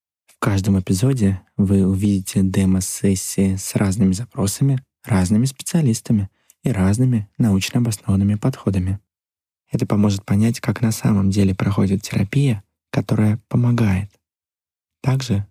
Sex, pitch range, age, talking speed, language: male, 95-115 Hz, 20-39, 110 wpm, Russian